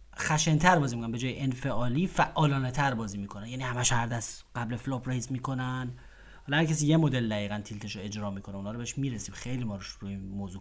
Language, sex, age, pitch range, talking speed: Persian, male, 30-49, 105-145 Hz, 200 wpm